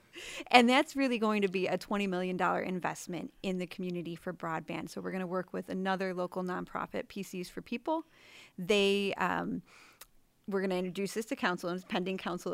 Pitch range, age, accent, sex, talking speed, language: 180-210 Hz, 30-49, American, female, 190 wpm, English